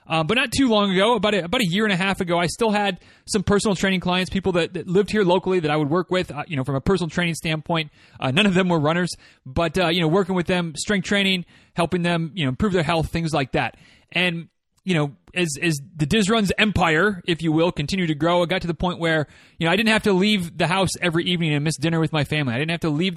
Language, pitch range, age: English, 150-185 Hz, 30-49